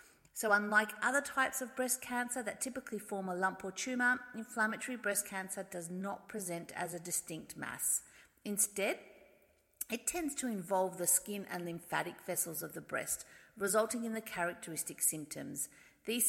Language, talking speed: English, 160 wpm